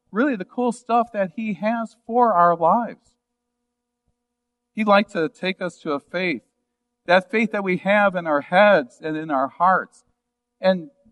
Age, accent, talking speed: 50-69, American, 165 wpm